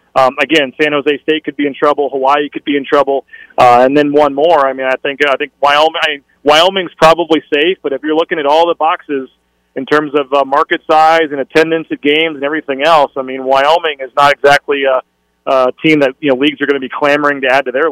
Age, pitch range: 30-49, 135-155 Hz